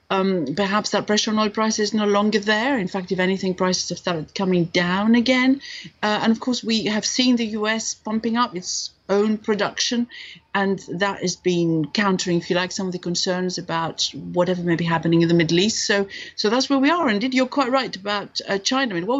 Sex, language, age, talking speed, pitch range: female, English, 60-79, 225 wpm, 180-220 Hz